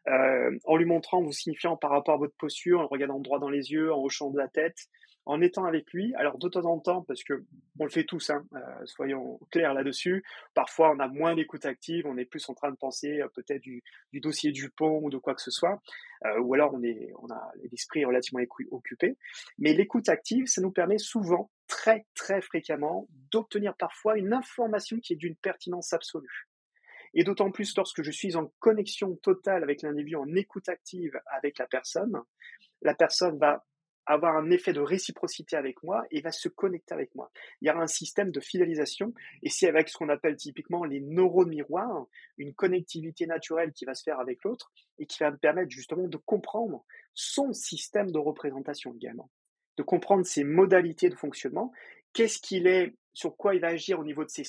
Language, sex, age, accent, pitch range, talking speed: French, male, 30-49, French, 145-195 Hz, 210 wpm